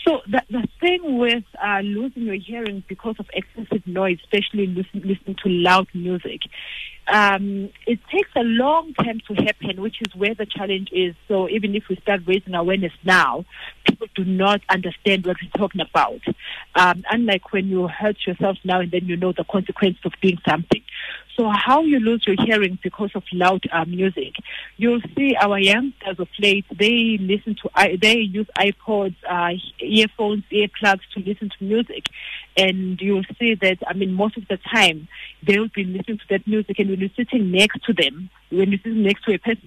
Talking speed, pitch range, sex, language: 190 wpm, 185-220 Hz, female, English